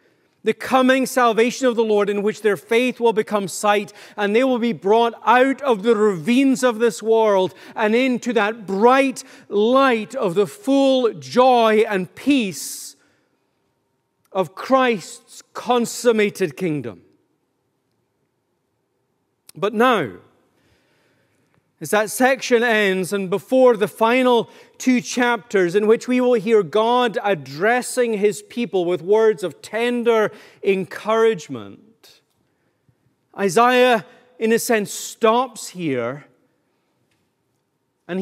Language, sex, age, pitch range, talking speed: English, male, 40-59, 195-245 Hz, 115 wpm